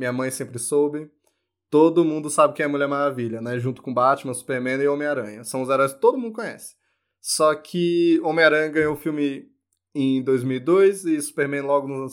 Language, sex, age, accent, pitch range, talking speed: Portuguese, male, 20-39, Brazilian, 125-155 Hz, 190 wpm